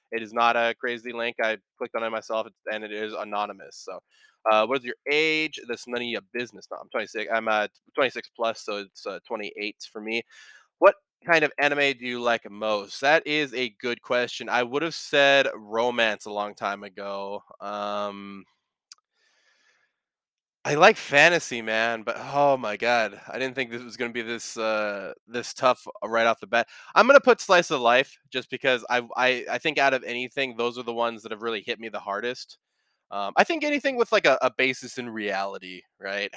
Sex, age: male, 20-39